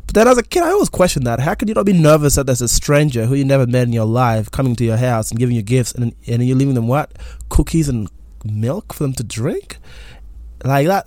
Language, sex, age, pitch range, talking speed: English, male, 20-39, 115-145 Hz, 265 wpm